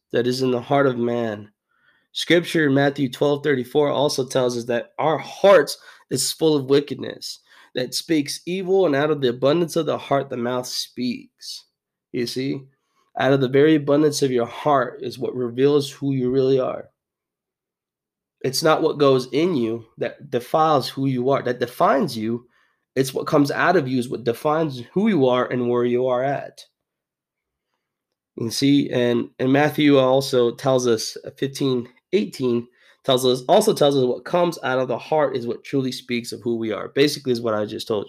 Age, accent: 20-39, American